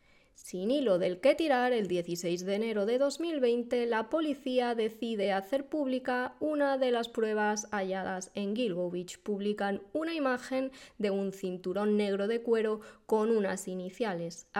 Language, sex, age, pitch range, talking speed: Spanish, female, 20-39, 185-255 Hz, 145 wpm